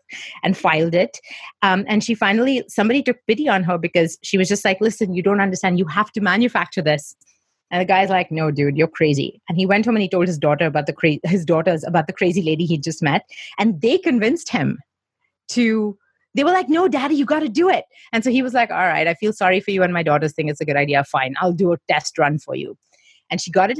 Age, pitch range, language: 30-49, 170-225 Hz, English